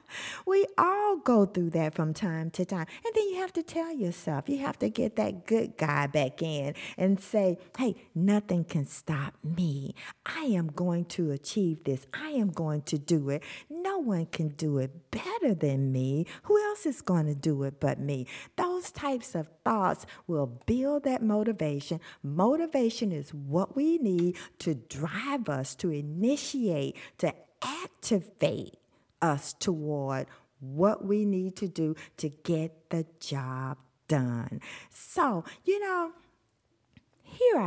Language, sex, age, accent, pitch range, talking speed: English, female, 50-69, American, 150-250 Hz, 155 wpm